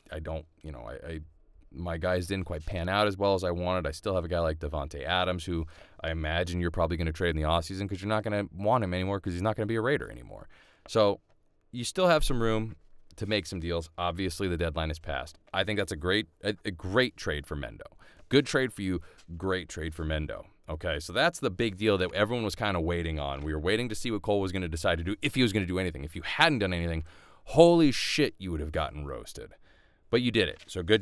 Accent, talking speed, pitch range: American, 265 wpm, 80-100 Hz